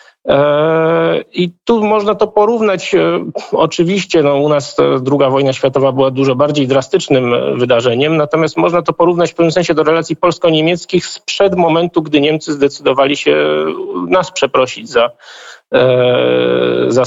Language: Polish